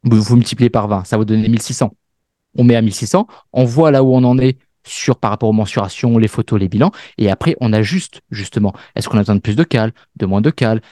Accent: French